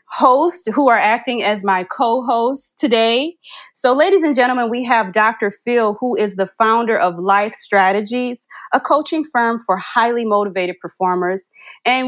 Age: 30-49